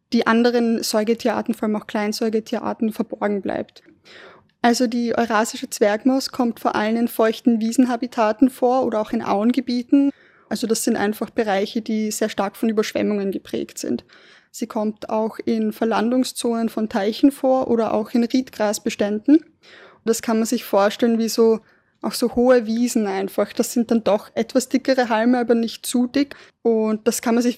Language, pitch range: German, 215-245 Hz